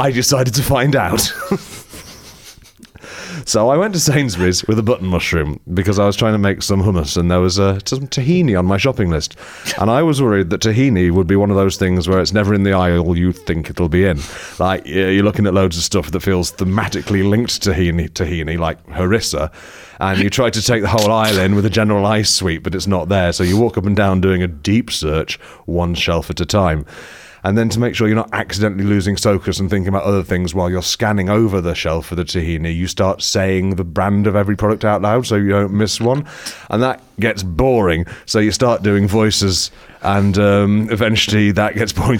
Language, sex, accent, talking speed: English, male, British, 220 wpm